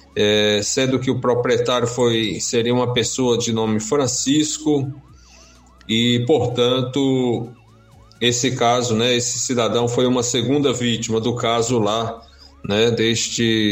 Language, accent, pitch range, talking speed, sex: Portuguese, Brazilian, 110-130 Hz, 115 wpm, male